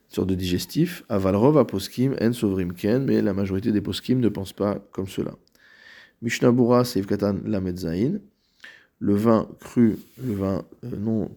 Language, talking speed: French, 160 wpm